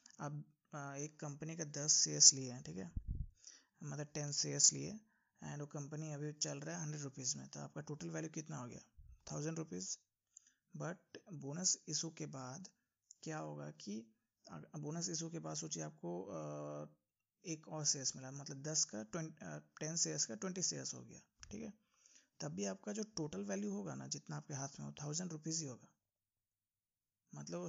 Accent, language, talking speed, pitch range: native, Hindi, 170 wpm, 110-165 Hz